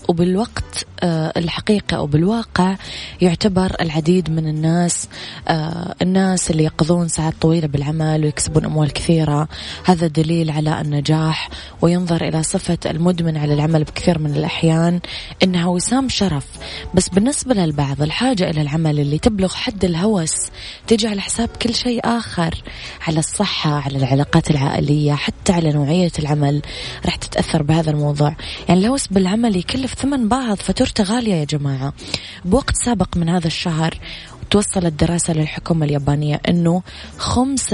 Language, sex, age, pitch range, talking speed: Arabic, female, 20-39, 155-185 Hz, 130 wpm